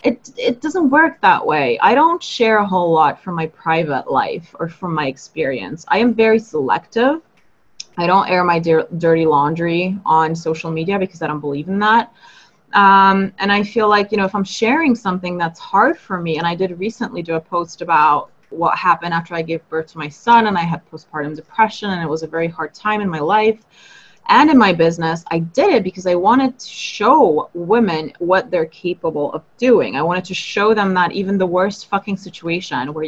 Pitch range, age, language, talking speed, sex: 170-220 Hz, 20-39, English, 210 wpm, female